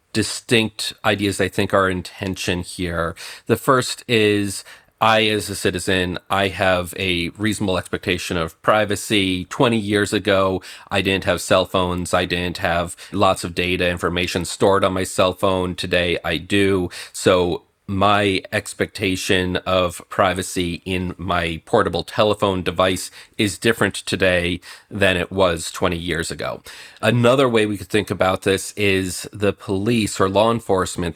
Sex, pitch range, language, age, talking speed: male, 90-105 Hz, English, 40-59, 145 wpm